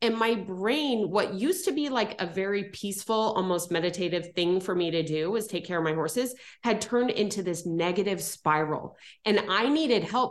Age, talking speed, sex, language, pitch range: 30-49, 200 wpm, female, English, 180-230 Hz